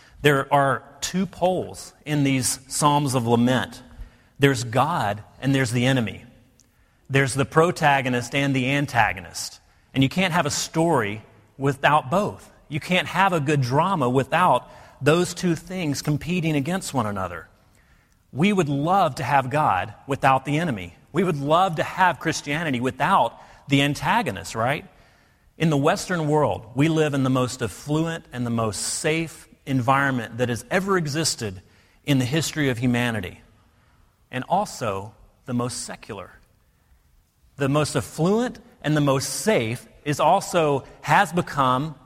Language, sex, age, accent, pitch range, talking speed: English, male, 40-59, American, 120-160 Hz, 145 wpm